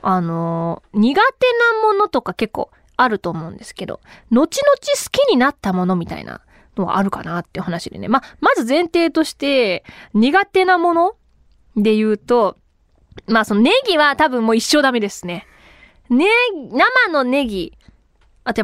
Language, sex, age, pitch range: Japanese, female, 20-39, 215-365 Hz